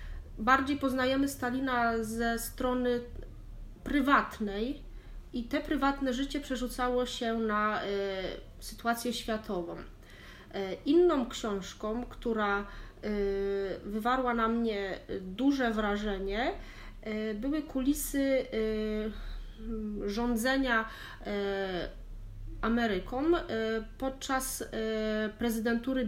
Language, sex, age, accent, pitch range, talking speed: Polish, female, 30-49, native, 215-255 Hz, 85 wpm